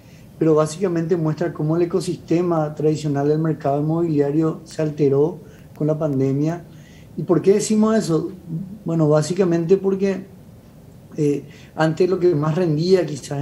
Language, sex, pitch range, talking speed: Spanish, male, 145-170 Hz, 135 wpm